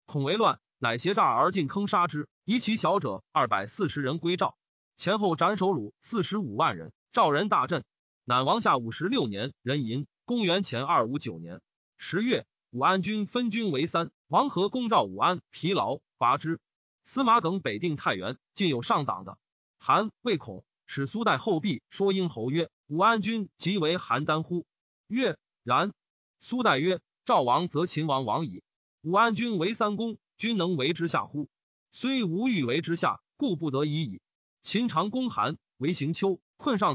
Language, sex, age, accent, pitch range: Chinese, male, 30-49, native, 155-220 Hz